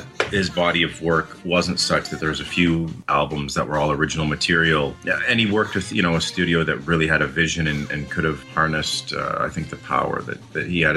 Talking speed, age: 245 wpm, 30-49